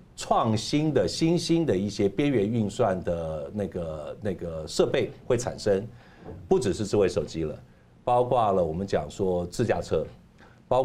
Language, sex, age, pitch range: Chinese, male, 50-69, 100-130 Hz